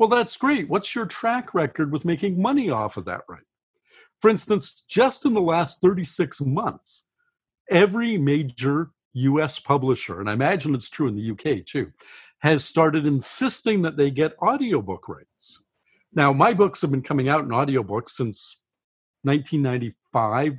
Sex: male